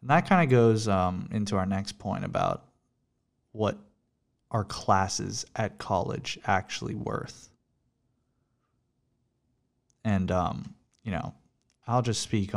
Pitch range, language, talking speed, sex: 95-120 Hz, English, 115 wpm, male